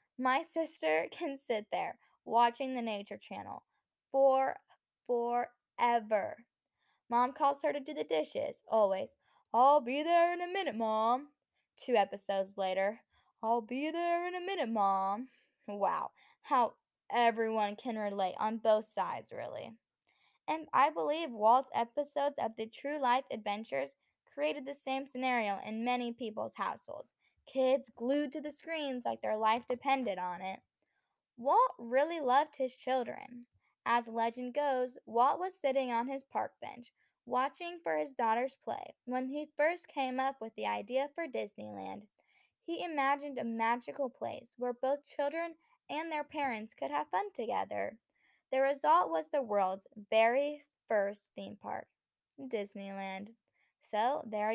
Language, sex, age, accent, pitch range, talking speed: English, female, 10-29, American, 220-285 Hz, 145 wpm